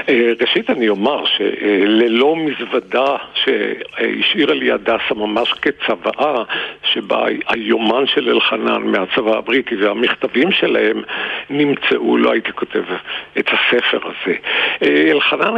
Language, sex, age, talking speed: Hebrew, male, 60-79, 100 wpm